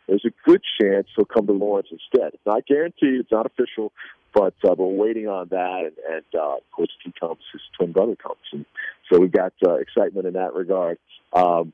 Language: English